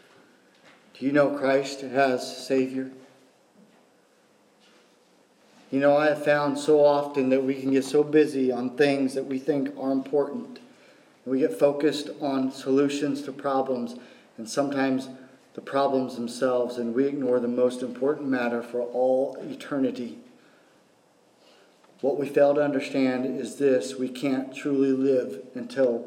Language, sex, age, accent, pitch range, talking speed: English, male, 40-59, American, 130-160 Hz, 140 wpm